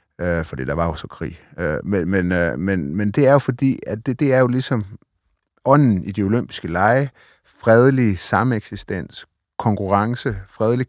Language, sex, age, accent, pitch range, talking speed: Danish, male, 30-49, native, 95-115 Hz, 160 wpm